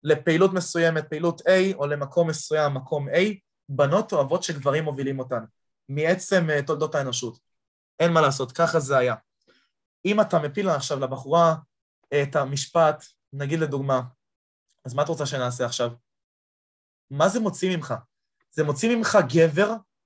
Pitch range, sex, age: 140-185 Hz, male, 20-39